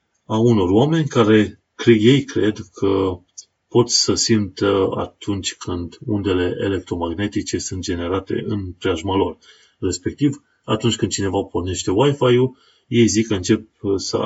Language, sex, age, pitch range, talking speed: Romanian, male, 30-49, 95-120 Hz, 125 wpm